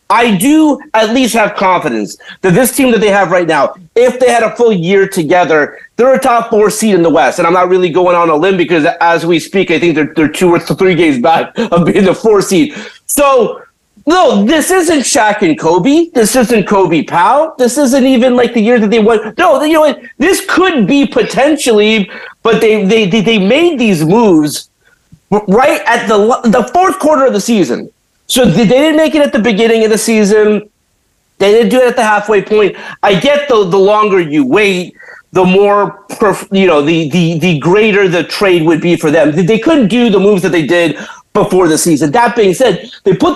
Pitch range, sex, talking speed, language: 180-255 Hz, male, 215 wpm, English